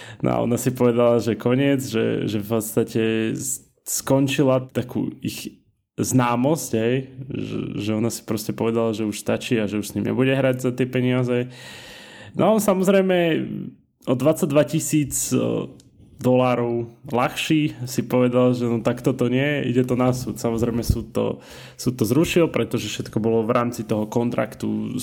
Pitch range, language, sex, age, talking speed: 110-130 Hz, Slovak, male, 20-39, 160 wpm